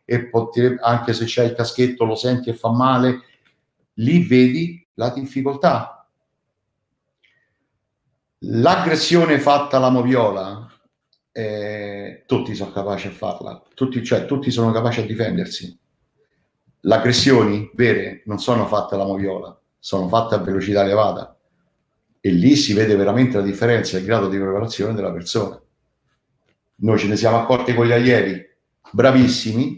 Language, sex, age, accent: Italian, male, 50-69, native